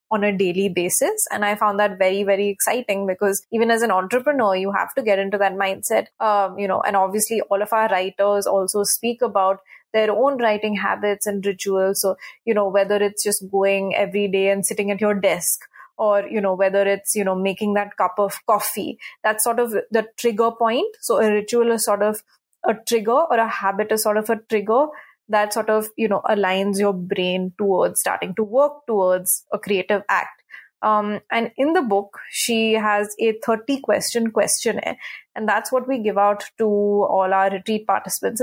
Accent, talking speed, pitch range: Indian, 195 wpm, 200-235 Hz